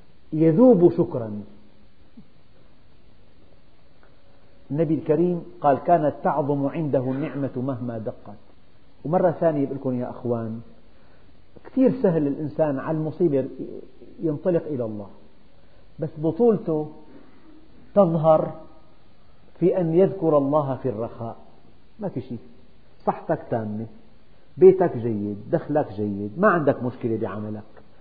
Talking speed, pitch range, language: 100 wpm, 125-185 Hz, Arabic